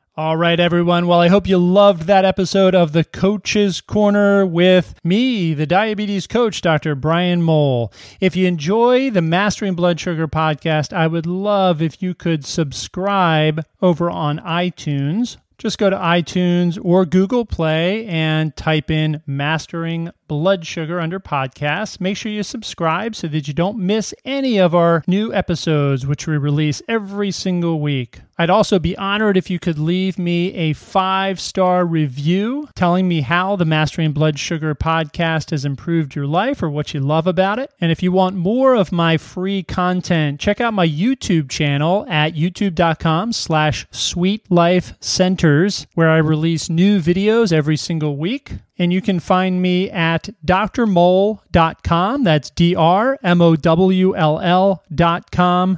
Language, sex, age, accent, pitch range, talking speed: English, male, 30-49, American, 155-190 Hz, 160 wpm